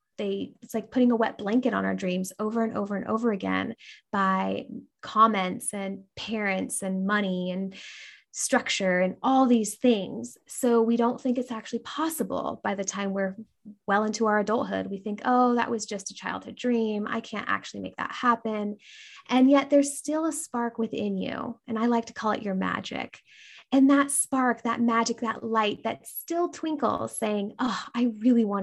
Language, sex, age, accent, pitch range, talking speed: English, female, 20-39, American, 195-245 Hz, 185 wpm